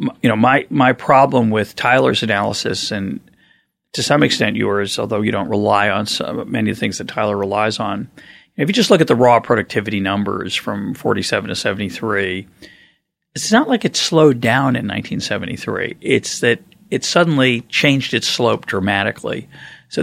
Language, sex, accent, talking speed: English, male, American, 170 wpm